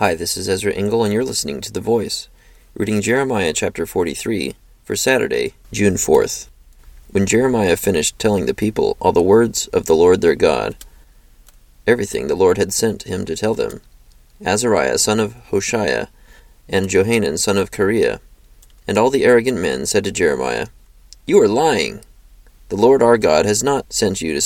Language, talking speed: English, 175 wpm